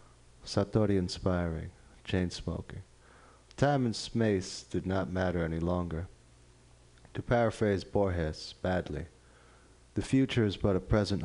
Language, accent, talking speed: English, American, 110 wpm